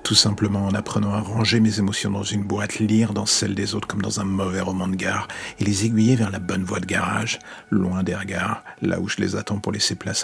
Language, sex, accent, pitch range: French, male, French, 95-110 Hz